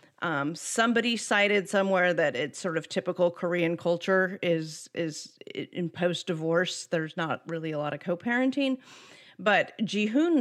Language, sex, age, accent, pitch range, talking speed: English, female, 40-59, American, 170-205 Hz, 140 wpm